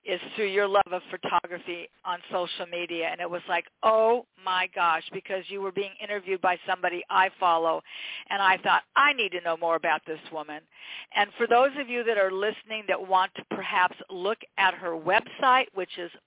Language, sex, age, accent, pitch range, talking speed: English, female, 50-69, American, 180-240 Hz, 200 wpm